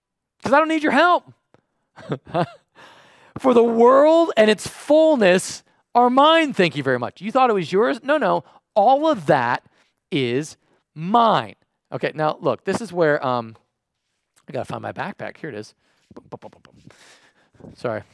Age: 40-59